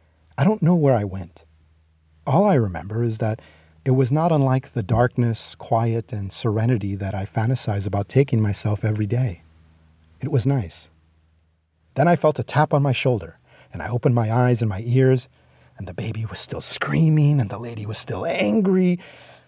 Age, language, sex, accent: 40-59, English, male, American